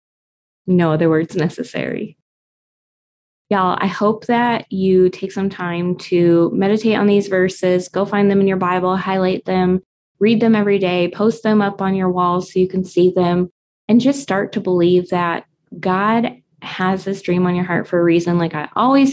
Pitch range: 180-210 Hz